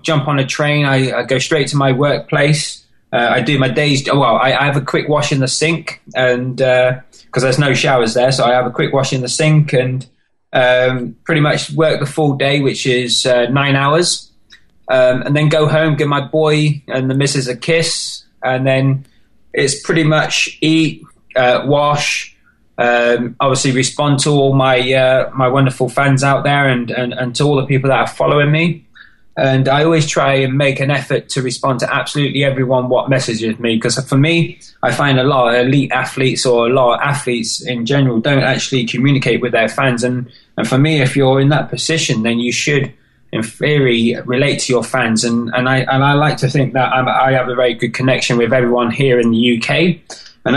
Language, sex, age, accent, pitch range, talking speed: English, male, 20-39, British, 125-145 Hz, 210 wpm